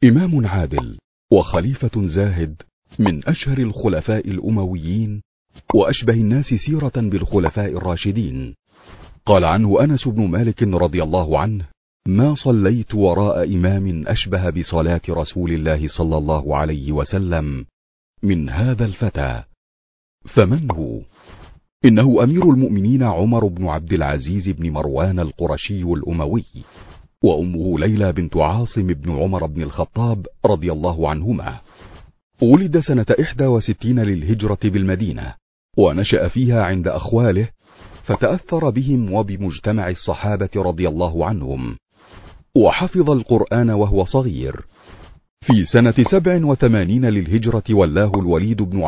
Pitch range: 85-115 Hz